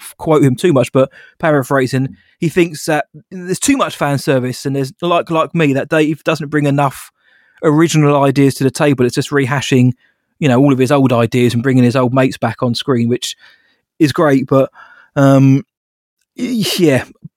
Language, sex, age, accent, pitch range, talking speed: English, male, 20-39, British, 125-155 Hz, 185 wpm